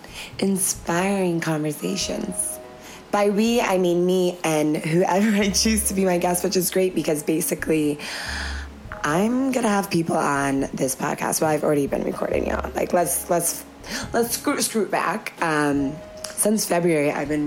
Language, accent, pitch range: English, American, 150-210 Hz